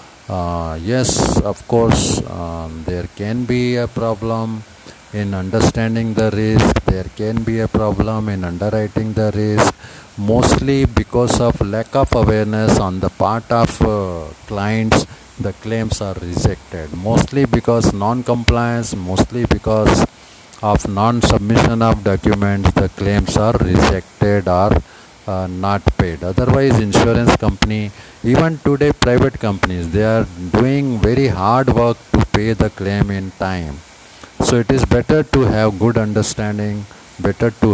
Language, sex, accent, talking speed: Hindi, male, native, 140 wpm